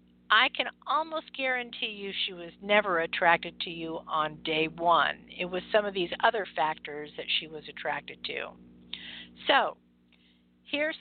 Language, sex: English, female